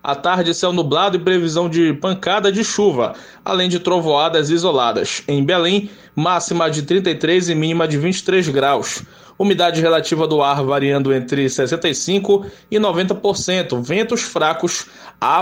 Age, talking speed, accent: 20-39, 140 wpm, Brazilian